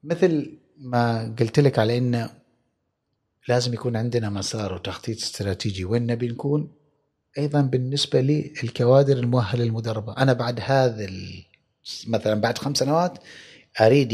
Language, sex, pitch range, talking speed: Arabic, male, 115-150 Hz, 115 wpm